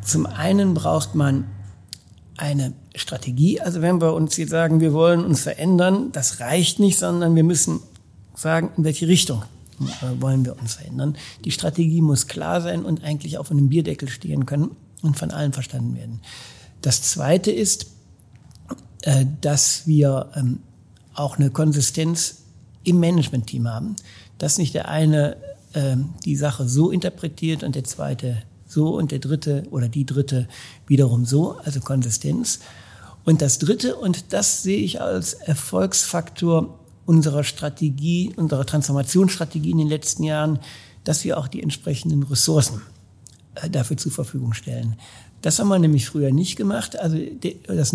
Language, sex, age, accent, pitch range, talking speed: German, male, 60-79, German, 125-165 Hz, 145 wpm